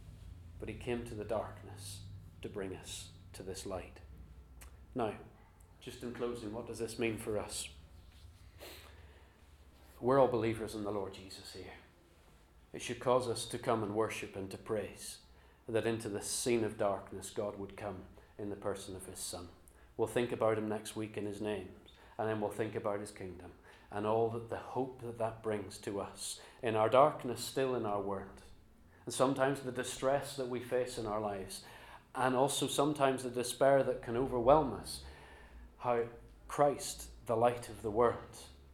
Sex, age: male, 30-49